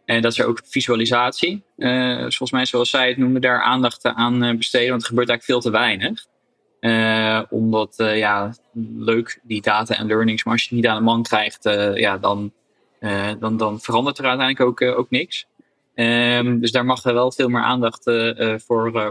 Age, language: 20-39, Dutch